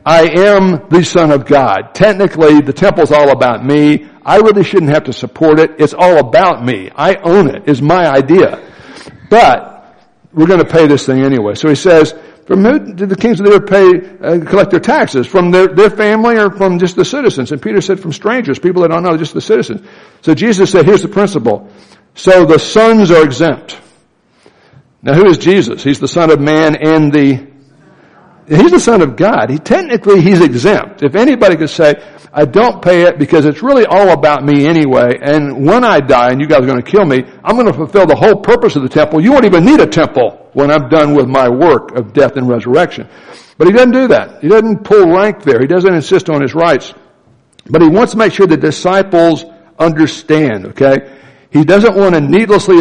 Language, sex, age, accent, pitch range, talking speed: English, male, 60-79, American, 145-195 Hz, 215 wpm